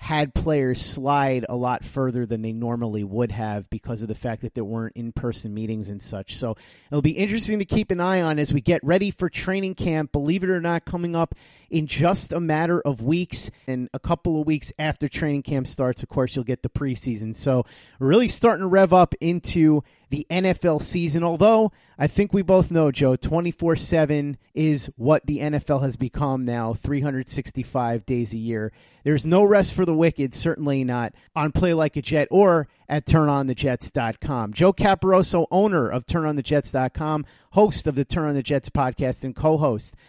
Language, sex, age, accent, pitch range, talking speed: English, male, 30-49, American, 130-170 Hz, 185 wpm